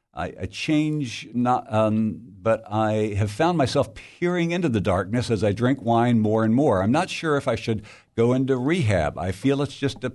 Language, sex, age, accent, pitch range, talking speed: English, male, 60-79, American, 100-125 Hz, 205 wpm